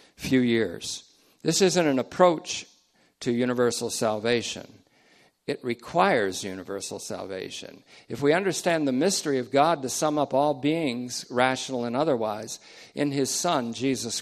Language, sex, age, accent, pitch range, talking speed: English, male, 50-69, American, 115-160 Hz, 135 wpm